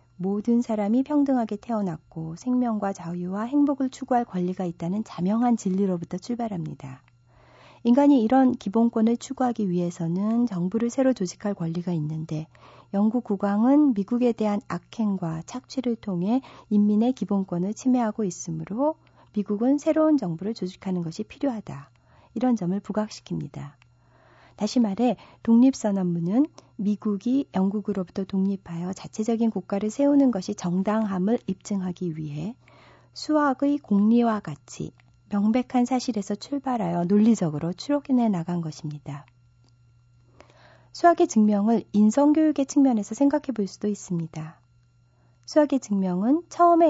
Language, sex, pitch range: Korean, female, 175-245 Hz